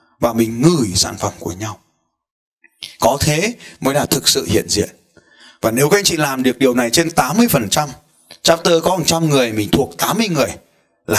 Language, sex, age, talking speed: Vietnamese, male, 20-39, 195 wpm